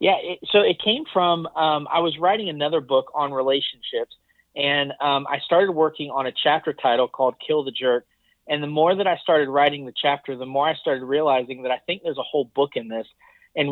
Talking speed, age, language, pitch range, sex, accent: 220 wpm, 40-59, English, 140-170 Hz, male, American